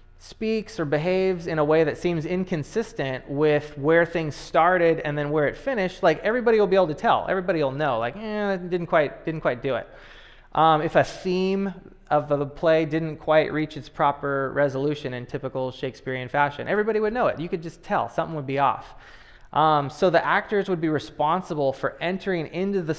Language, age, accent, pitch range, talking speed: English, 20-39, American, 145-180 Hz, 200 wpm